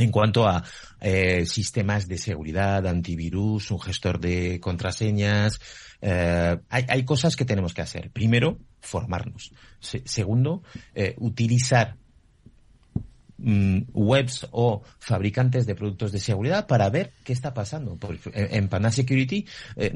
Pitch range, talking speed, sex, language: 100-125 Hz, 140 wpm, male, Spanish